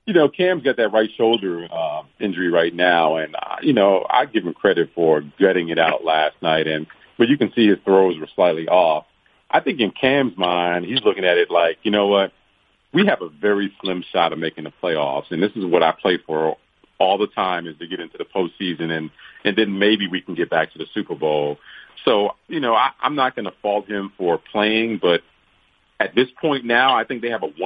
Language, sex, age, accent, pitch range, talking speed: English, male, 40-59, American, 90-115 Hz, 235 wpm